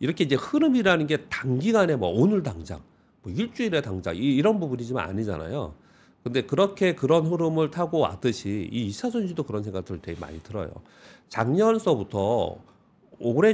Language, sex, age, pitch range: Korean, male, 40-59, 110-165 Hz